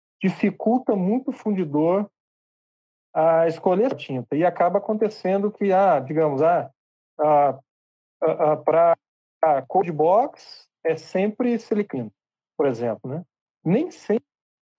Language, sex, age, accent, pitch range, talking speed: Portuguese, male, 40-59, Brazilian, 145-205 Hz, 105 wpm